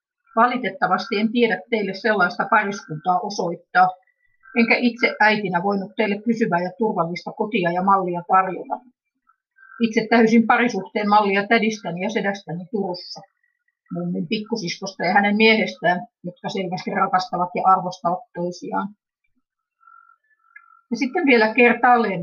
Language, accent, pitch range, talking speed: Finnish, native, 180-235 Hz, 115 wpm